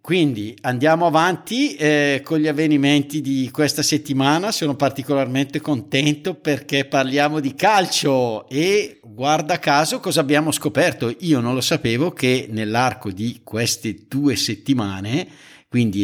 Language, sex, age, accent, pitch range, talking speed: Italian, male, 50-69, native, 115-145 Hz, 125 wpm